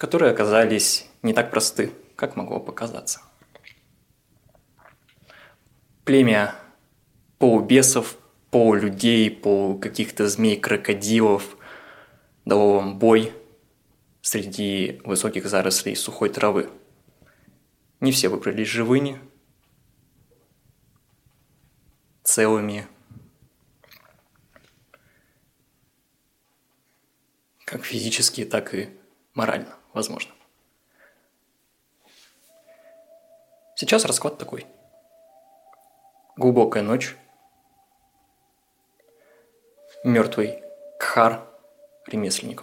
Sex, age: male, 20-39